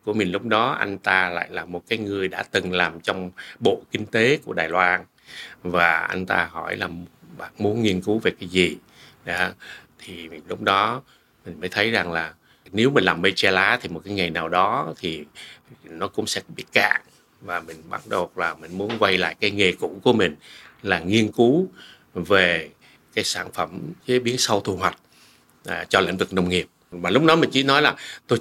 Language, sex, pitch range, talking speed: Vietnamese, male, 85-105 Hz, 210 wpm